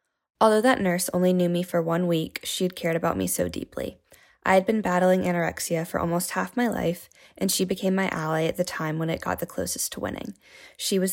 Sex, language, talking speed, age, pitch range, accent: female, English, 230 wpm, 10-29, 165-190 Hz, American